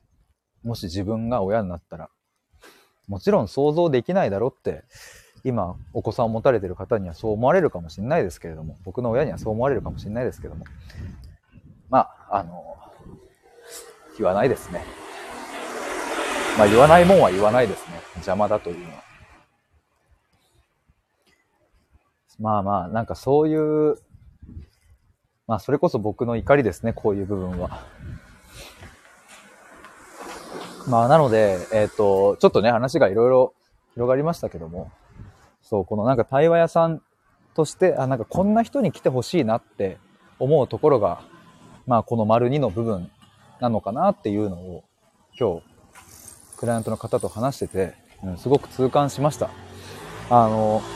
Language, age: Japanese, 40-59